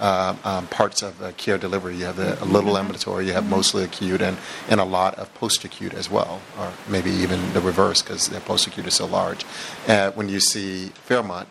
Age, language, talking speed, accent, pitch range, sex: 30-49, English, 215 wpm, American, 95-100 Hz, male